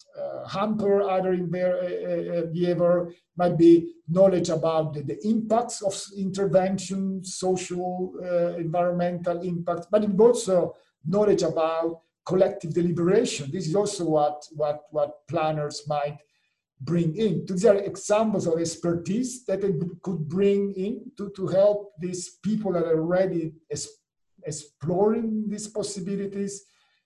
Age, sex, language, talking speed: 50-69, male, English, 125 wpm